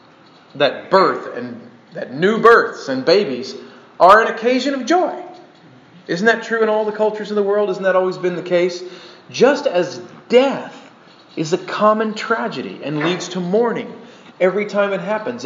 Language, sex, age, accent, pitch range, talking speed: English, male, 40-59, American, 150-215 Hz, 170 wpm